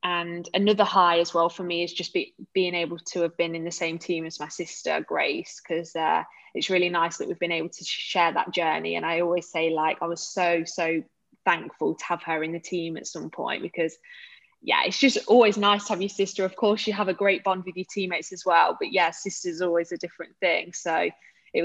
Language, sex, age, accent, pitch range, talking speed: English, female, 20-39, British, 170-190 Hz, 240 wpm